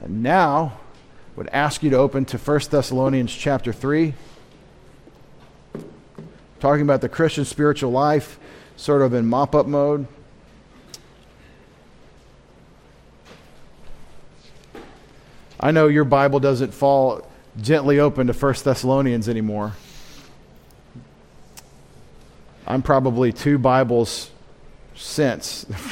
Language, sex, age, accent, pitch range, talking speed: English, male, 40-59, American, 120-145 Hz, 95 wpm